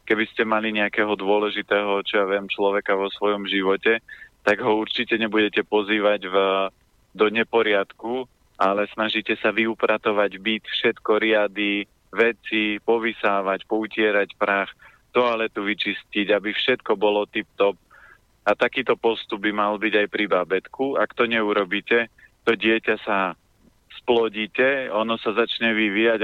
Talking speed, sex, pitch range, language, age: 130 wpm, male, 105-115 Hz, Slovak, 30-49